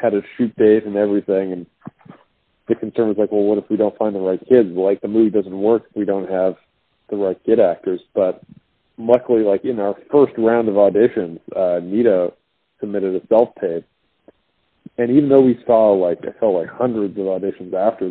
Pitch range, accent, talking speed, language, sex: 100-115 Hz, American, 200 wpm, English, male